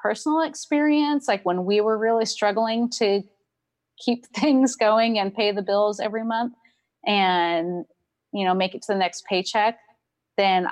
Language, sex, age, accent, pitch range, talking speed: English, female, 30-49, American, 170-215 Hz, 155 wpm